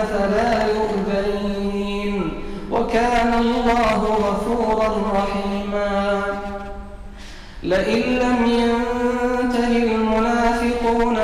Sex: male